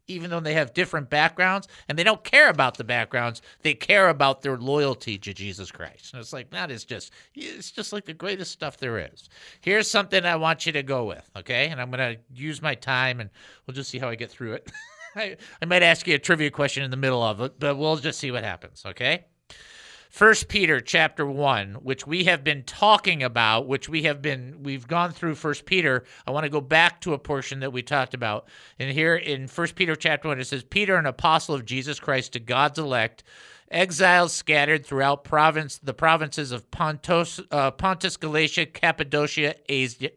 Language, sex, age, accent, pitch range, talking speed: English, male, 50-69, American, 130-175 Hz, 215 wpm